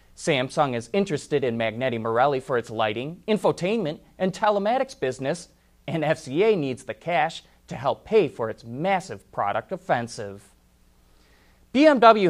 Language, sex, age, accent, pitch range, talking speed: English, male, 30-49, American, 130-205 Hz, 130 wpm